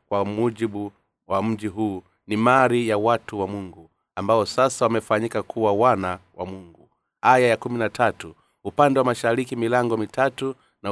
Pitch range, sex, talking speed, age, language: 105-125 Hz, male, 150 wpm, 30-49, Swahili